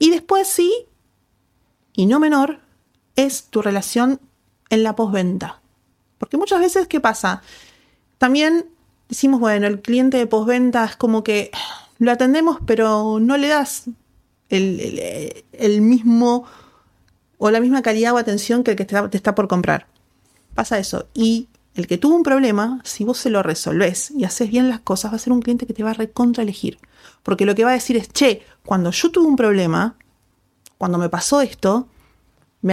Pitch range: 195-255 Hz